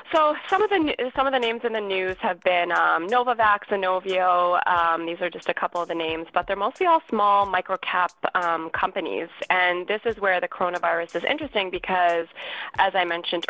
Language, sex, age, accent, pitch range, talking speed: English, female, 20-39, American, 165-185 Hz, 205 wpm